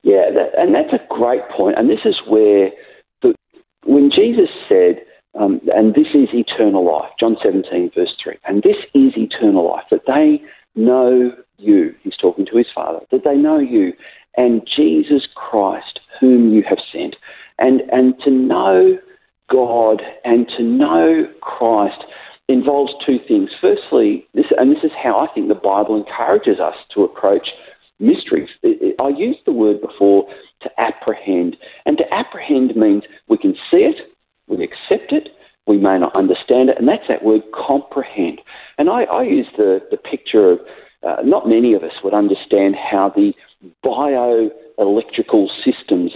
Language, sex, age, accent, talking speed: English, male, 50-69, Australian, 160 wpm